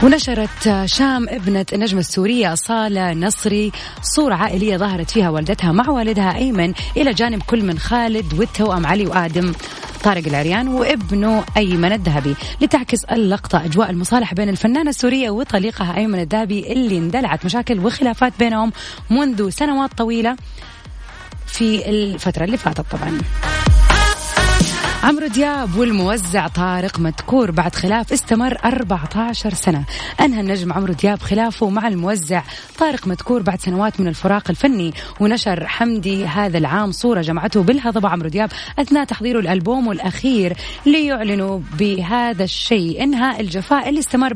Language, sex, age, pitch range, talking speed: Arabic, female, 30-49, 185-240 Hz, 130 wpm